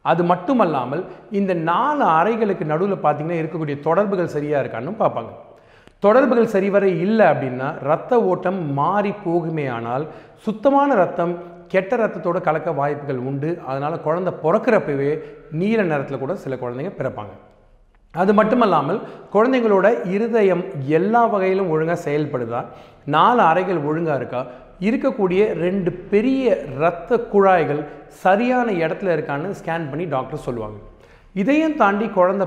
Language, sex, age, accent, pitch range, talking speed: Tamil, male, 40-59, native, 145-195 Hz, 115 wpm